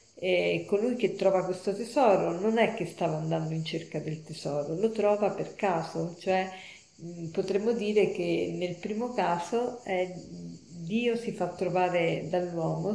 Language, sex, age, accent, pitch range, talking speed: Italian, female, 50-69, native, 170-205 Hz, 150 wpm